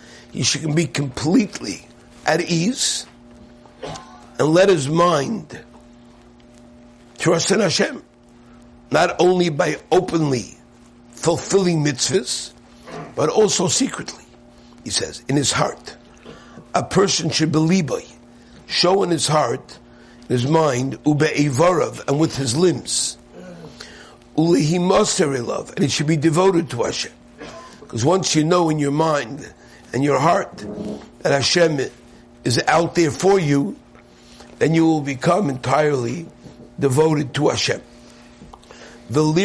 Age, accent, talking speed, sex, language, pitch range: 60-79, American, 120 wpm, male, English, 120-170 Hz